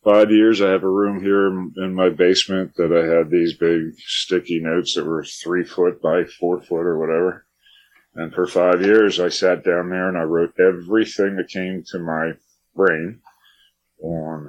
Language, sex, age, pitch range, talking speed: English, male, 50-69, 70-90 Hz, 180 wpm